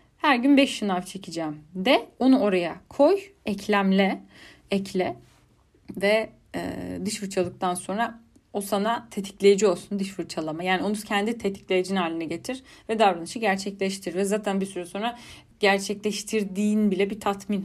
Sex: female